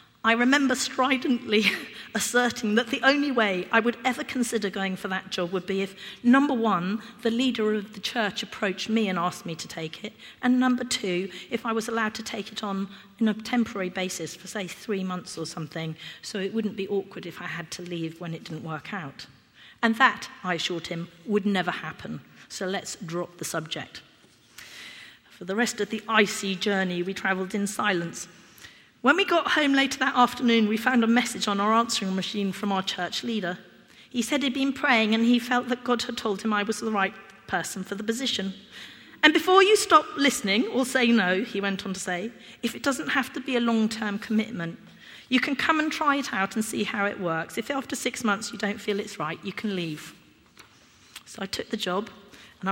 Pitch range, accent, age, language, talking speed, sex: 190-240 Hz, British, 40-59, English, 210 wpm, female